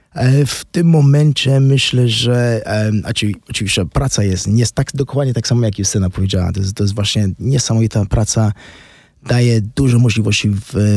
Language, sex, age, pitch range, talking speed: Polish, male, 20-39, 105-130 Hz, 165 wpm